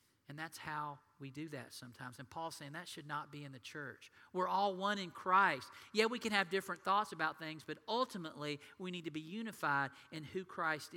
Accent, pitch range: American, 165-220 Hz